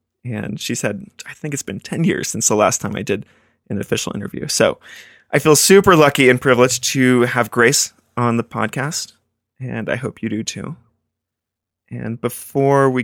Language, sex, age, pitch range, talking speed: English, male, 20-39, 115-140 Hz, 185 wpm